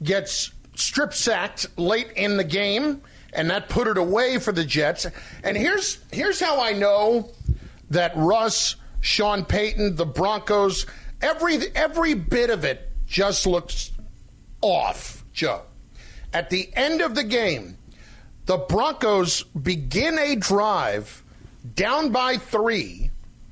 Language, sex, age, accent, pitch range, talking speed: English, male, 50-69, American, 165-215 Hz, 125 wpm